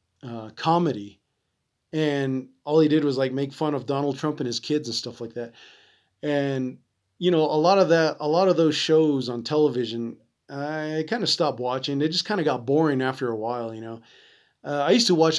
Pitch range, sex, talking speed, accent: 125-155 Hz, male, 215 wpm, American